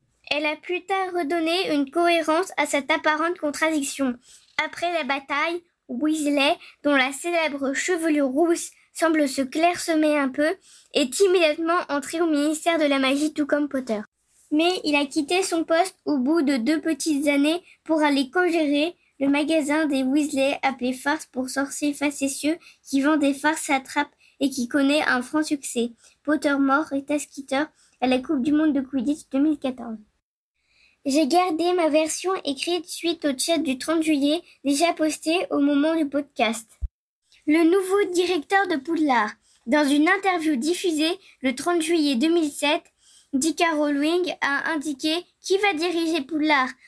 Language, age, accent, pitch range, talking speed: French, 10-29, French, 280-330 Hz, 155 wpm